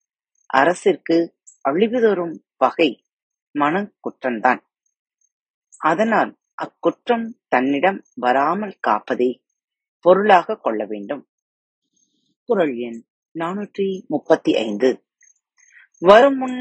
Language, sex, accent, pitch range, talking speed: Tamil, female, native, 140-220 Hz, 40 wpm